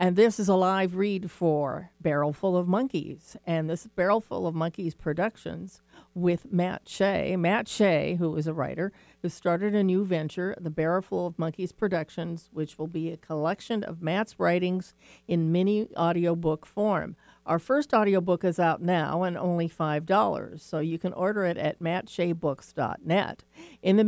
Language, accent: English, American